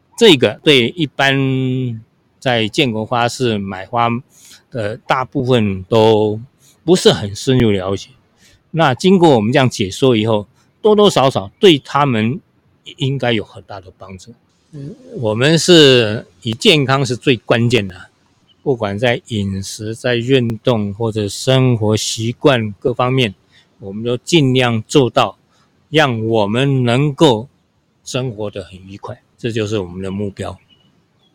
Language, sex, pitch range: Chinese, male, 105-135 Hz